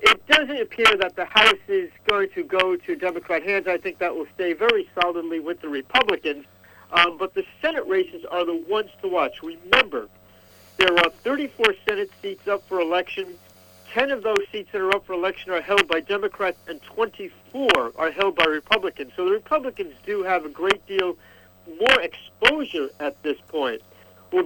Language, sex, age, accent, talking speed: English, male, 60-79, American, 185 wpm